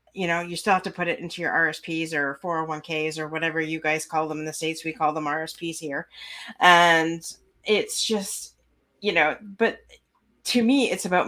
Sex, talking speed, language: female, 195 wpm, English